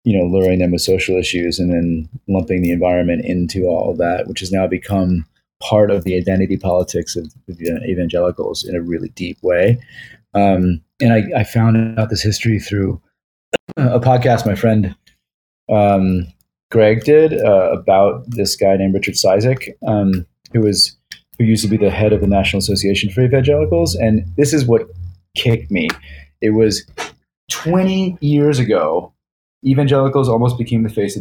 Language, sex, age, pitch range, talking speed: English, male, 30-49, 95-120 Hz, 170 wpm